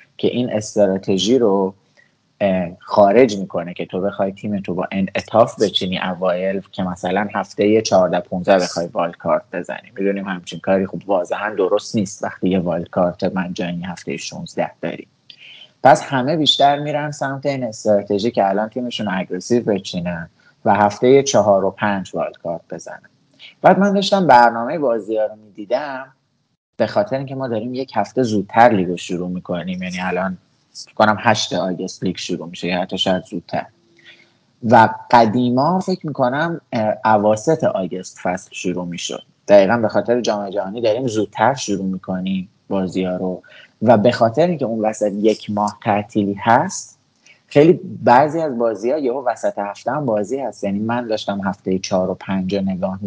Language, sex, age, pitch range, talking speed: Persian, male, 30-49, 95-120 Hz, 150 wpm